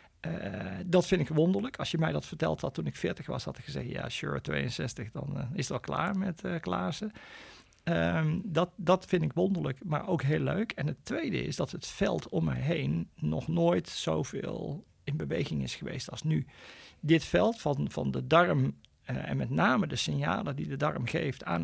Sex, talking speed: male, 210 wpm